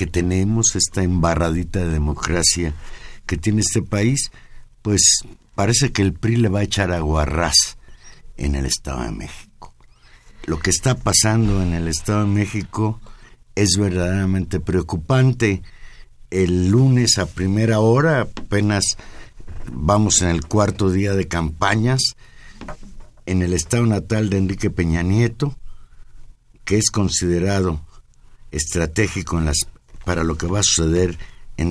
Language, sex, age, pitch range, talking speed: Spanish, male, 60-79, 85-105 Hz, 135 wpm